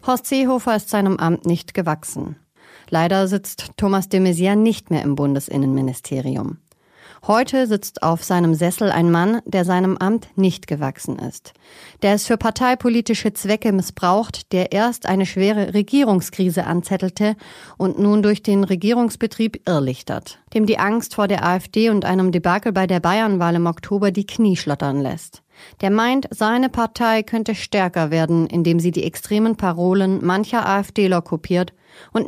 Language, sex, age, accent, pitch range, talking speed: German, female, 40-59, German, 175-215 Hz, 150 wpm